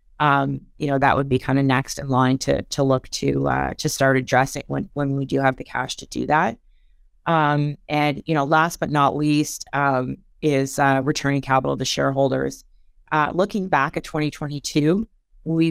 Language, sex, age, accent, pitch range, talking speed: English, female, 30-49, American, 135-155 Hz, 185 wpm